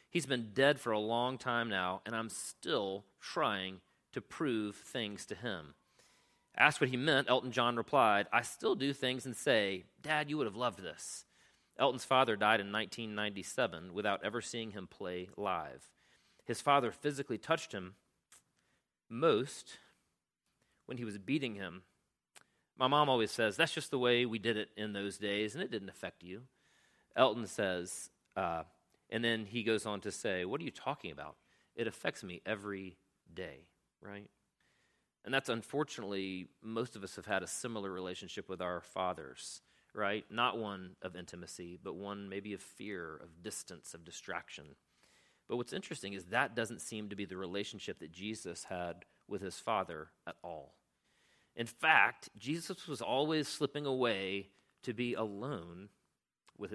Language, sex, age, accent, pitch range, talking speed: English, male, 40-59, American, 95-125 Hz, 165 wpm